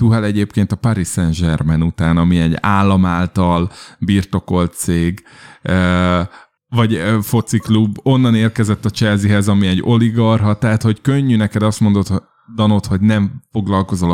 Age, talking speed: 20-39, 130 wpm